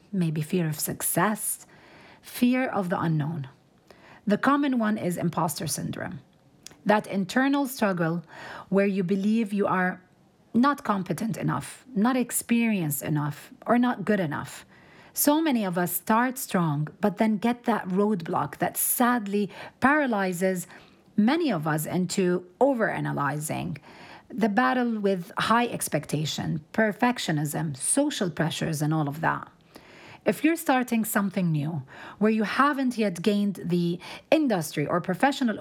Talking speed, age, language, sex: 130 wpm, 40-59, English, female